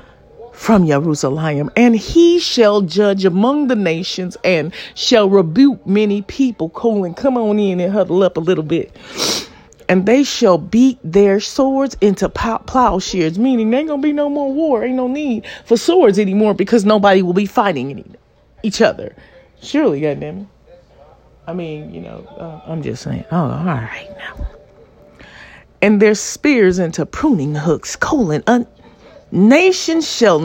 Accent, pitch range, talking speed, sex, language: American, 175-255 Hz, 155 wpm, female, English